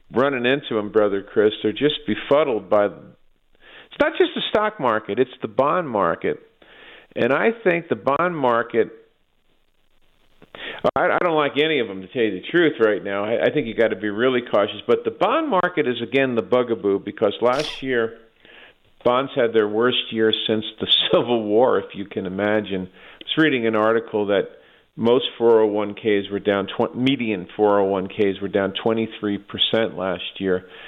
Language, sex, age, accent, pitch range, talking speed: English, male, 50-69, American, 105-140 Hz, 175 wpm